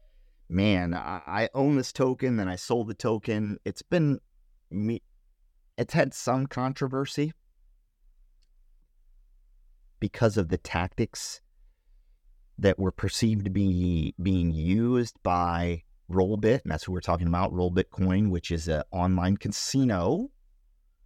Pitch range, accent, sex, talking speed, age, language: 85-110 Hz, American, male, 125 wpm, 30-49, English